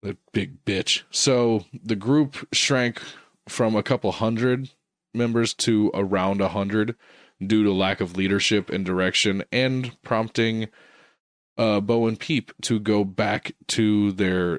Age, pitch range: 20-39, 95-120 Hz